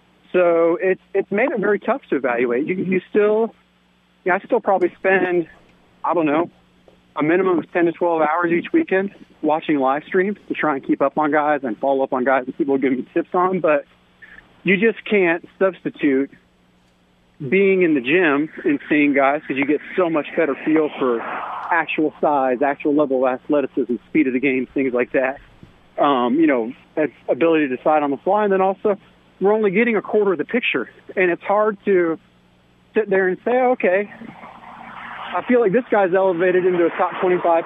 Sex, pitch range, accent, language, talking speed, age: male, 140-195 Hz, American, English, 200 wpm, 40-59